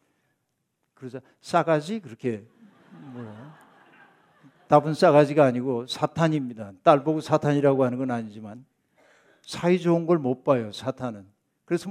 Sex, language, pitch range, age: male, Korean, 135-180 Hz, 60-79